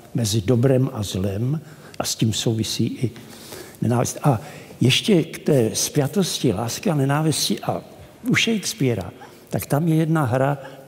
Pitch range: 120-155 Hz